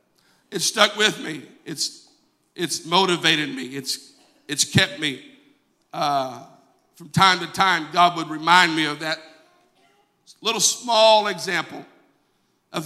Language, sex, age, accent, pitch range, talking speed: English, male, 50-69, American, 165-215 Hz, 125 wpm